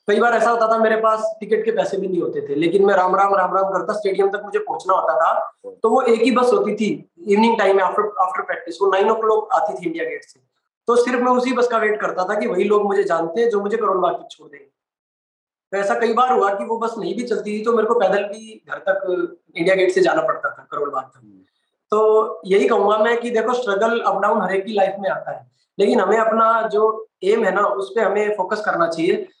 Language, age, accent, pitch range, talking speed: Hindi, 20-39, native, 190-230 Hz, 190 wpm